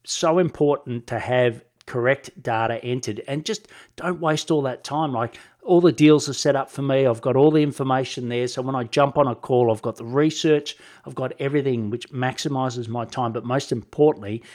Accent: Australian